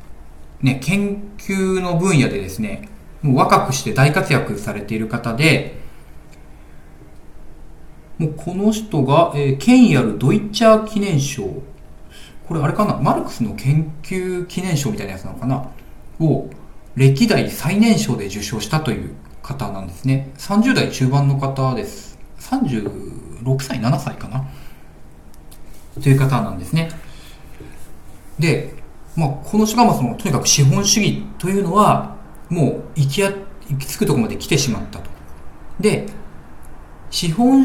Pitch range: 100-165 Hz